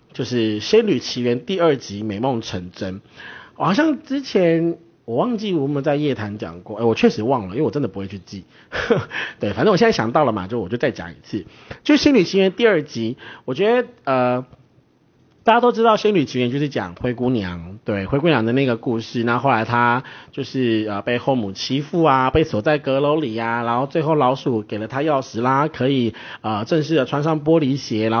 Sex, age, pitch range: male, 30-49, 115-165 Hz